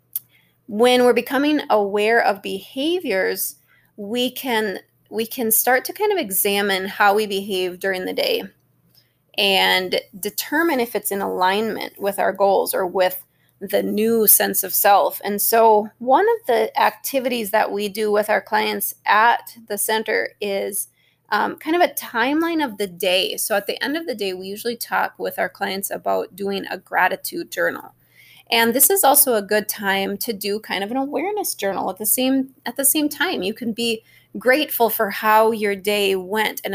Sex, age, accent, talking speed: female, 20-39, American, 180 wpm